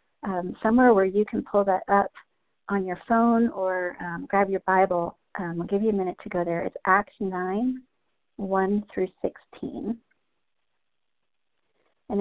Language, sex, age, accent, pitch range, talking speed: English, female, 50-69, American, 185-225 Hz, 160 wpm